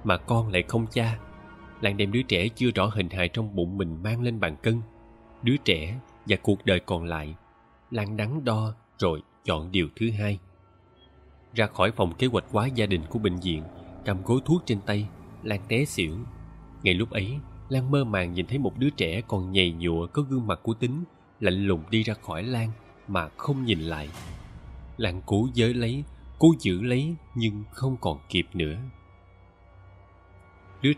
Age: 20-39